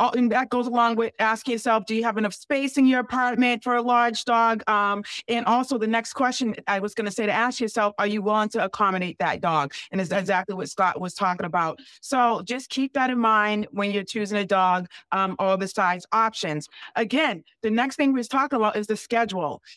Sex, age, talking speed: female, 40-59, 225 wpm